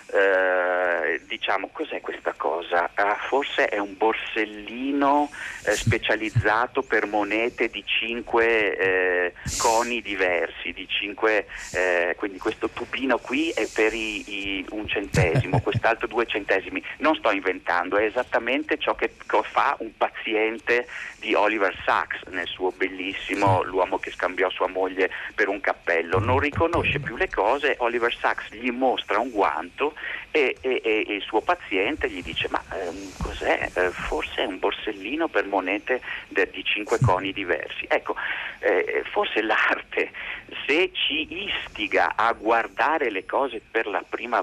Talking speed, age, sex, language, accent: 145 wpm, 40-59, male, Italian, native